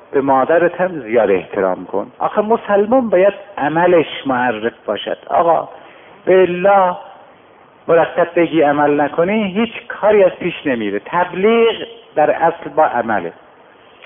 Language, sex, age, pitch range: Persian, male, 60-79, 135-200 Hz